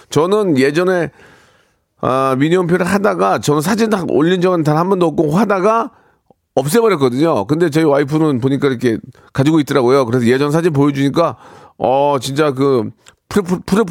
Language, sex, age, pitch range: Korean, male, 40-59, 125-175 Hz